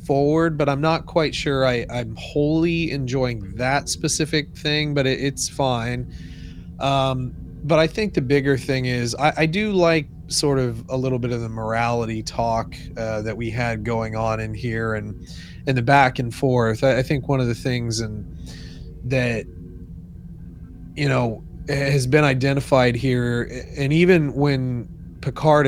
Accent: American